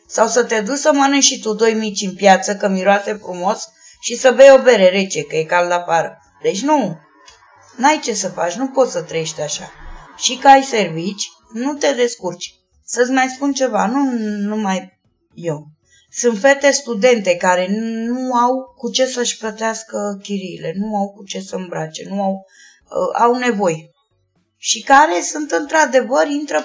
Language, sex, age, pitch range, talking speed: Romanian, female, 20-39, 190-255 Hz, 180 wpm